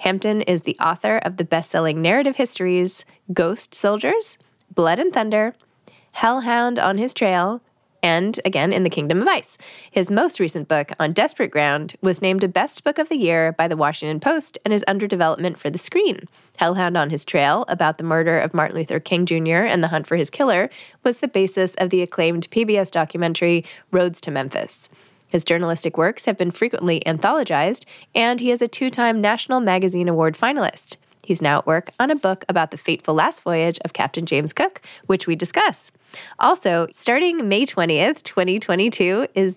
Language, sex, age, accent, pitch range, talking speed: English, female, 20-39, American, 165-215 Hz, 185 wpm